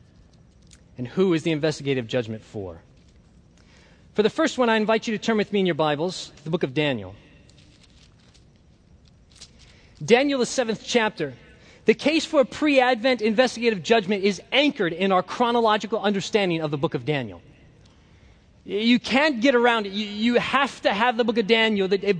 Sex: male